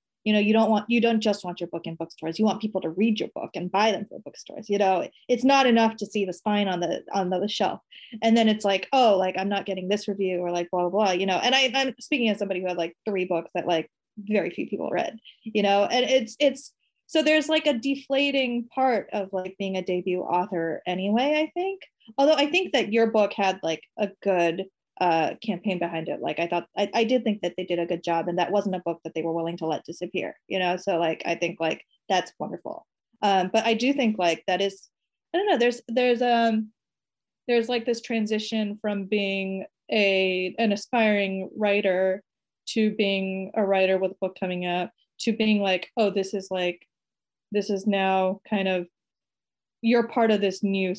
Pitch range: 185-230 Hz